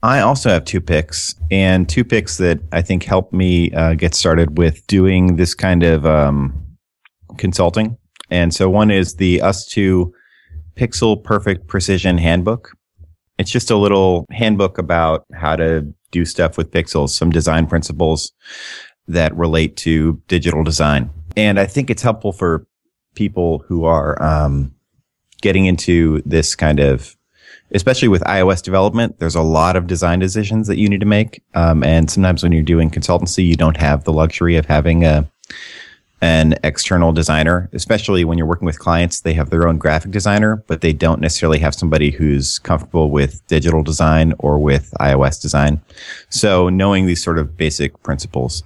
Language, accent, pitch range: English, American, 80-95 Hz